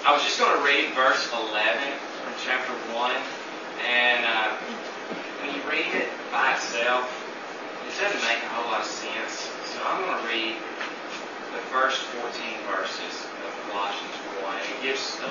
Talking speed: 170 wpm